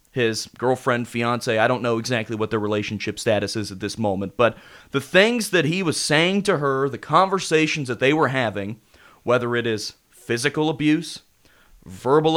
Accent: American